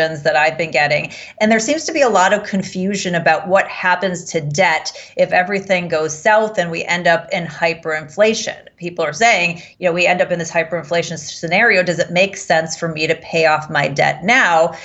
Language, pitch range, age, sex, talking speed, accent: English, 170-200 Hz, 30-49, female, 210 wpm, American